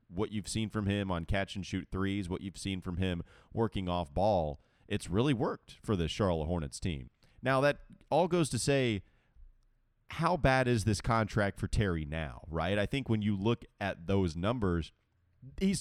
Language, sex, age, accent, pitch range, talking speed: English, male, 30-49, American, 90-120 Hz, 190 wpm